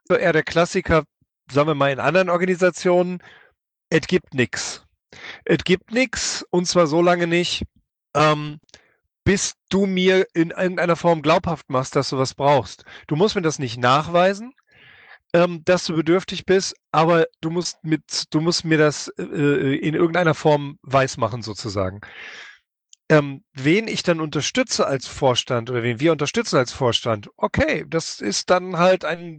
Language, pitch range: German, 135-175 Hz